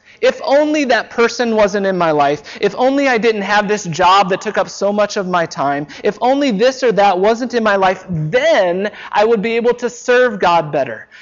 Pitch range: 145-215 Hz